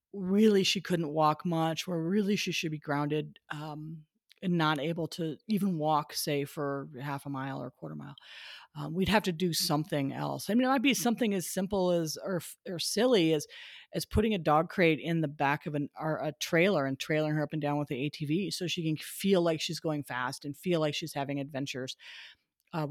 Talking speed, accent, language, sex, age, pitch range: 220 wpm, American, English, female, 40-59, 150-200 Hz